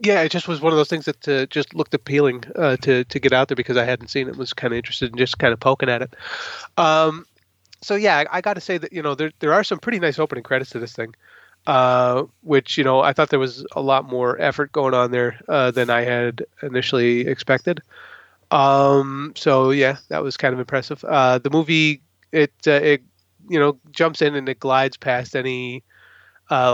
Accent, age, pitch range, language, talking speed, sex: American, 30-49, 125-145 Hz, English, 230 wpm, male